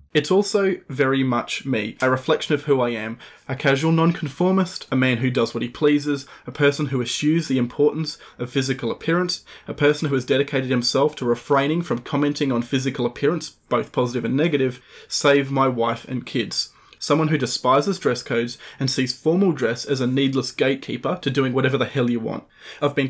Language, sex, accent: English, male, Australian